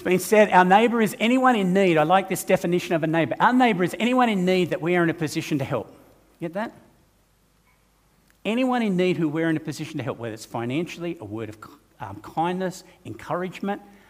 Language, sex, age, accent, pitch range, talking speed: English, male, 50-69, Australian, 150-225 Hz, 215 wpm